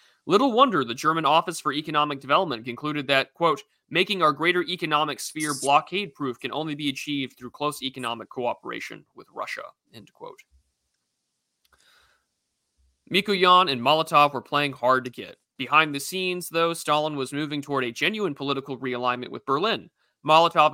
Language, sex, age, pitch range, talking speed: English, male, 30-49, 130-160 Hz, 150 wpm